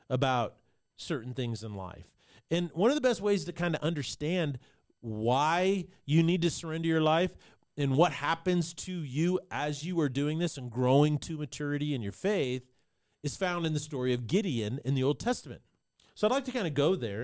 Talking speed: 200 wpm